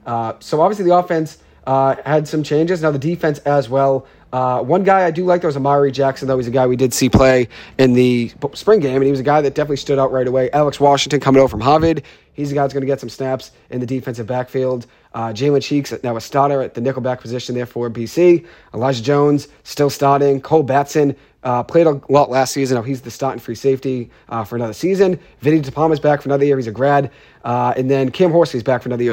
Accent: American